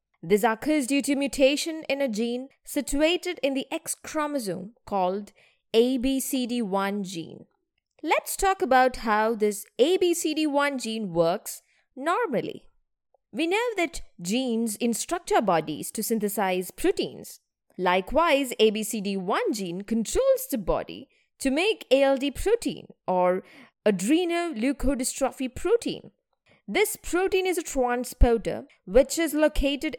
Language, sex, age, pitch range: English, female, 20-39, 200-290 Hz